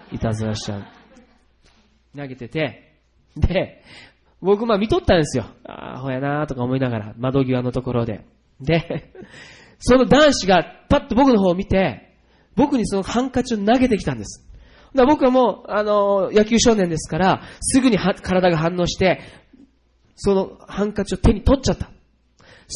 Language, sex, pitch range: Japanese, male, 130-215 Hz